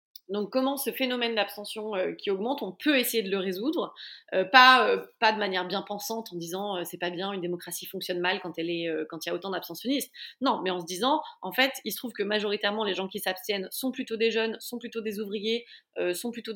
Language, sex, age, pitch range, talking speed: French, female, 30-49, 190-240 Hz, 245 wpm